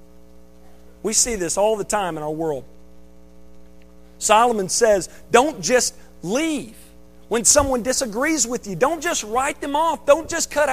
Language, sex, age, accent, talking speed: English, male, 40-59, American, 150 wpm